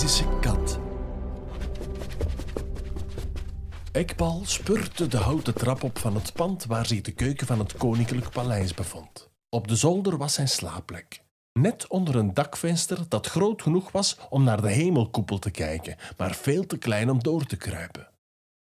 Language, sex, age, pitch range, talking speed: Dutch, male, 50-69, 105-150 Hz, 145 wpm